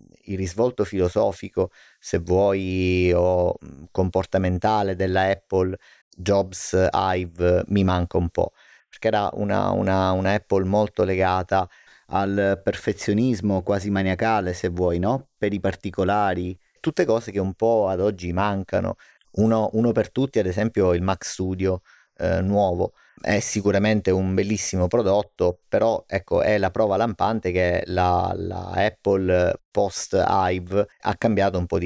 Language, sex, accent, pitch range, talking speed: Italian, male, native, 90-100 Hz, 135 wpm